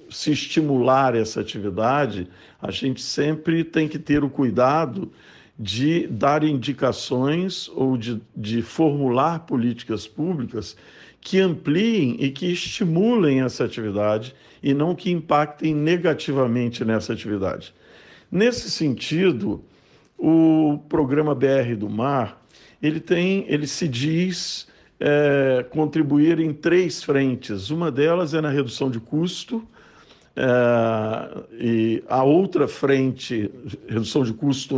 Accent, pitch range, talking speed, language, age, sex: Brazilian, 115-150 Hz, 110 wpm, Portuguese, 50-69, male